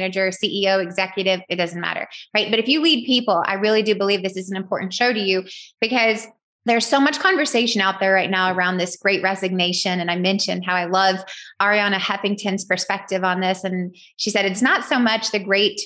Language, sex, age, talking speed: English, female, 20-39, 210 wpm